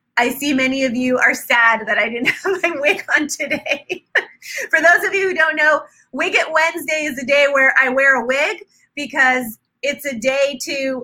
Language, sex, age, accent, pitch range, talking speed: English, female, 20-39, American, 245-305 Hz, 205 wpm